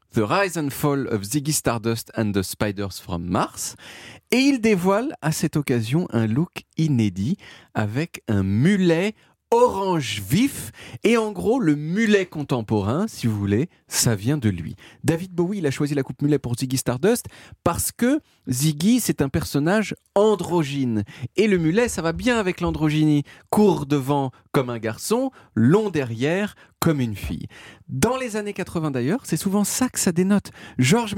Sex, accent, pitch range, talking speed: male, French, 130-210 Hz, 170 wpm